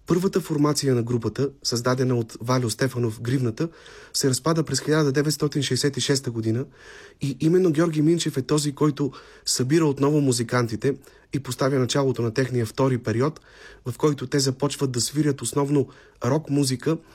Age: 30-49